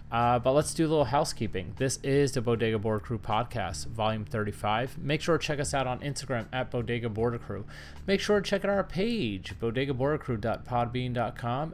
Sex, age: male, 30-49